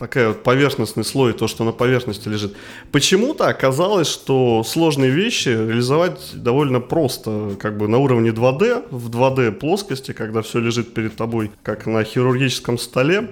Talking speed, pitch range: 155 wpm, 110-135 Hz